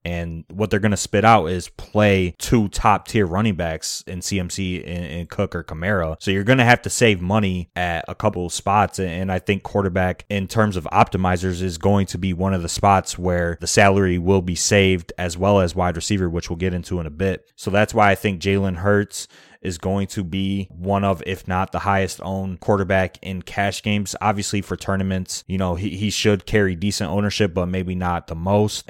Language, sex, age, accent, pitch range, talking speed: English, male, 20-39, American, 90-105 Hz, 220 wpm